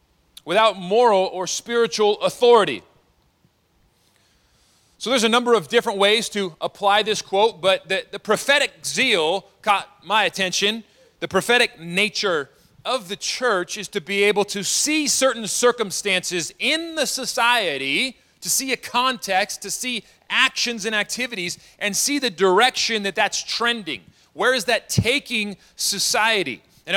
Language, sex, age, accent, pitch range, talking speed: English, male, 30-49, American, 190-245 Hz, 140 wpm